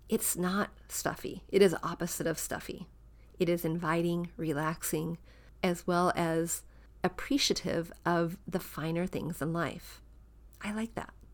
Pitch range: 165-195 Hz